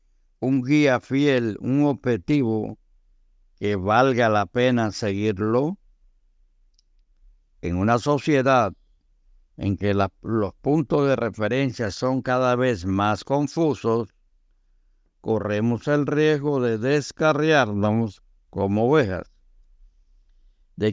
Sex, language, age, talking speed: male, Spanish, 60-79, 90 wpm